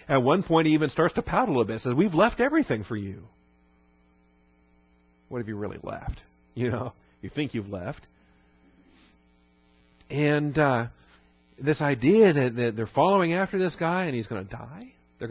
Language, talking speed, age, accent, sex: English, 175 wpm, 40-59, American, male